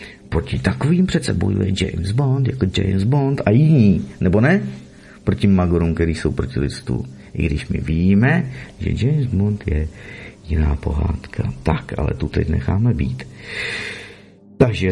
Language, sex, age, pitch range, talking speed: Czech, male, 50-69, 80-115 Hz, 140 wpm